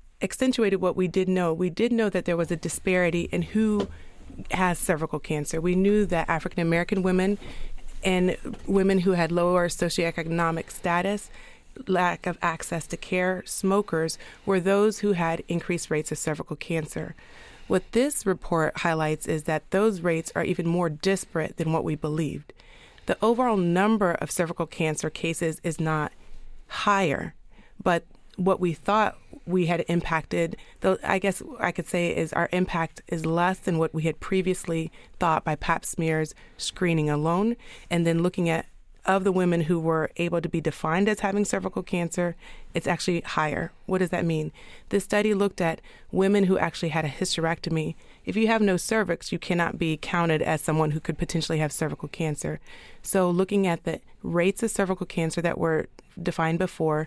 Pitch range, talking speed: 165-190 Hz, 170 wpm